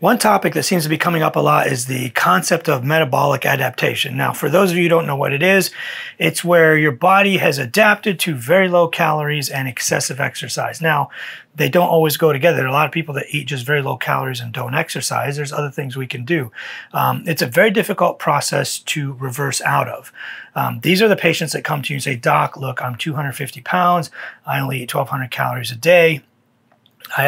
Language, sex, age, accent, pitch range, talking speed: English, male, 30-49, American, 140-175 Hz, 220 wpm